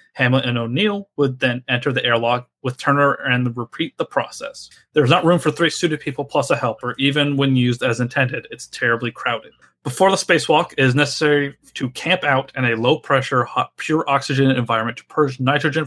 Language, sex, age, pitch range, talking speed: English, male, 30-49, 120-145 Hz, 195 wpm